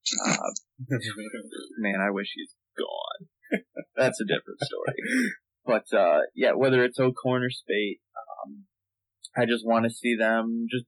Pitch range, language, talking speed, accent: 105-125 Hz, English, 140 wpm, American